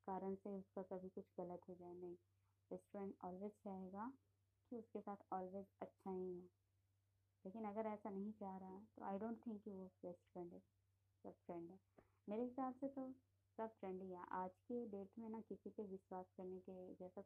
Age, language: 20-39, Hindi